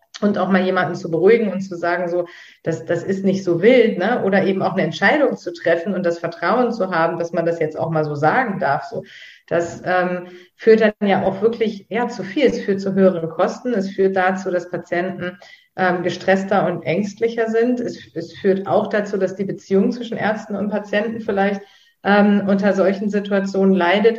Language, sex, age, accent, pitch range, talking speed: German, female, 40-59, German, 175-210 Hz, 205 wpm